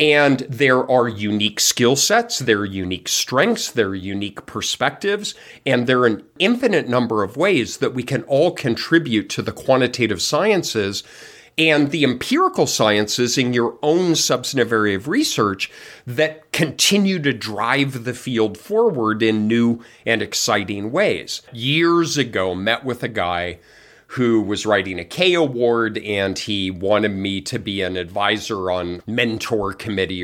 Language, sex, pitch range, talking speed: English, male, 105-145 Hz, 155 wpm